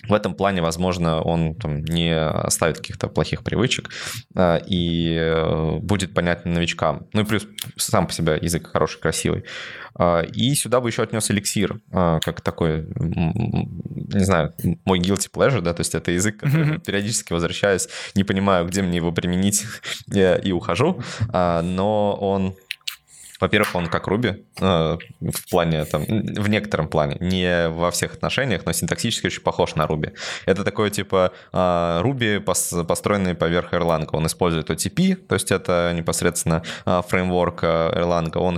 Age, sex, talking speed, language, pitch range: 20-39, male, 140 wpm, Russian, 85-100 Hz